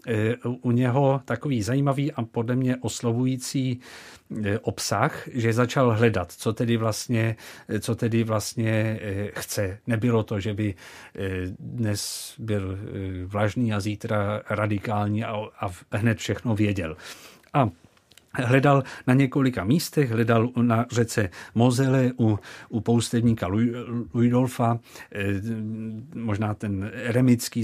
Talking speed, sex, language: 100 wpm, male, Czech